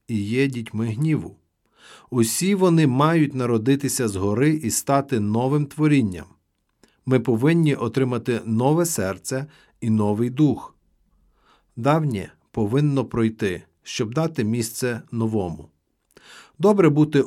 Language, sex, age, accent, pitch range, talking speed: Ukrainian, male, 50-69, native, 115-155 Hz, 105 wpm